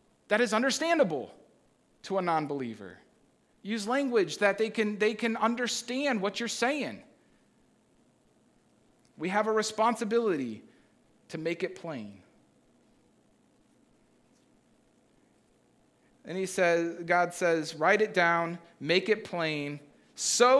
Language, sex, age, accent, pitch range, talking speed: English, male, 40-59, American, 155-205 Hz, 110 wpm